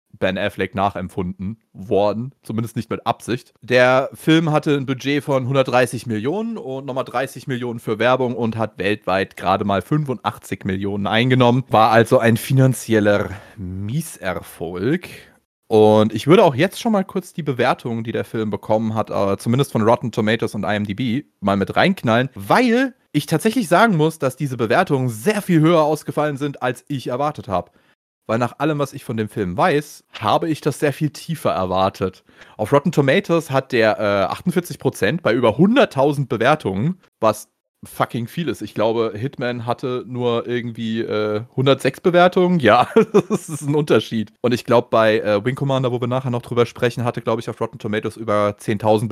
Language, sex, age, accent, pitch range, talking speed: German, male, 30-49, German, 110-150 Hz, 175 wpm